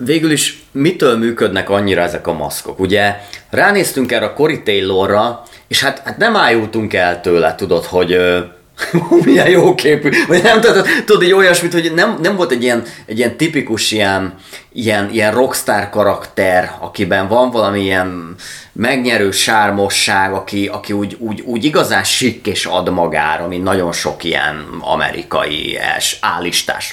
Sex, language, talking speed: male, Hungarian, 155 wpm